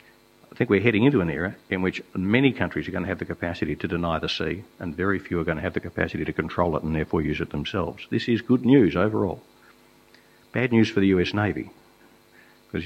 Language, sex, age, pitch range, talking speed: English, male, 50-69, 85-105 Hz, 235 wpm